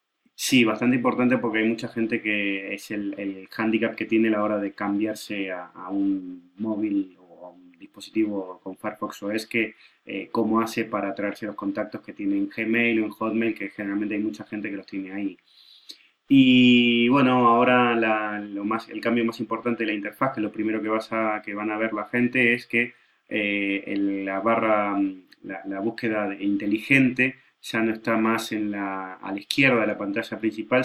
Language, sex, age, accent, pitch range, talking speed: Spanish, male, 20-39, Argentinian, 100-115 Hz, 200 wpm